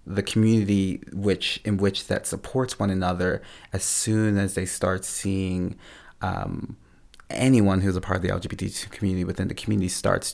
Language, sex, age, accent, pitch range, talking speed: English, male, 20-39, American, 90-100 Hz, 165 wpm